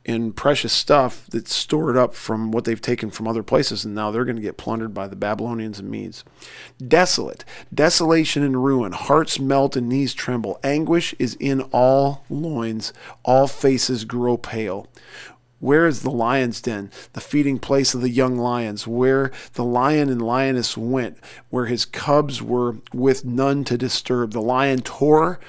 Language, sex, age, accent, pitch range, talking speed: English, male, 40-59, American, 115-135 Hz, 165 wpm